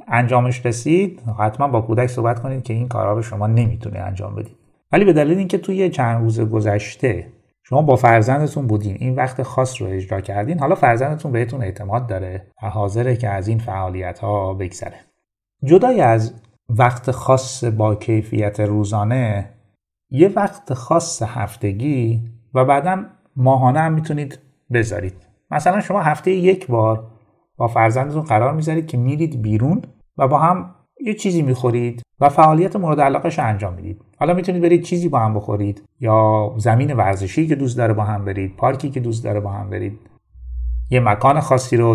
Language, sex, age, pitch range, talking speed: Persian, male, 30-49, 105-145 Hz, 165 wpm